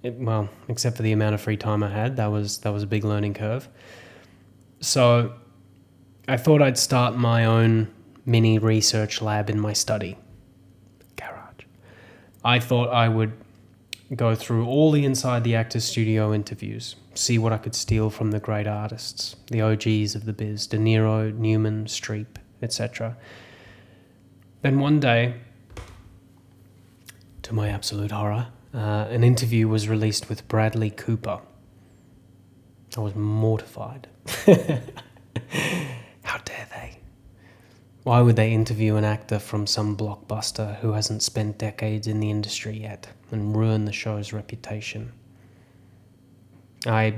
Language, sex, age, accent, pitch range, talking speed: English, male, 20-39, Australian, 105-120 Hz, 135 wpm